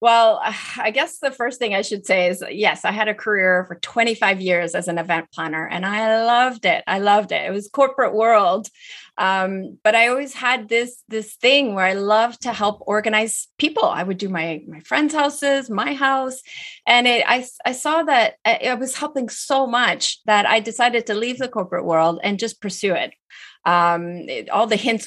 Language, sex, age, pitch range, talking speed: English, female, 30-49, 175-240 Hz, 200 wpm